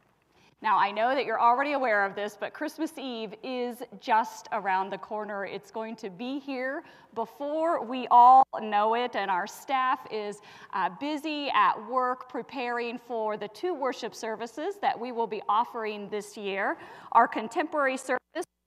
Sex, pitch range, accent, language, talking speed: female, 215-275 Hz, American, English, 165 wpm